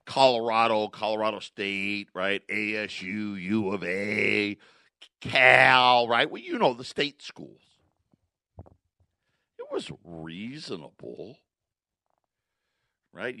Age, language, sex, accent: 50-69, English, male, American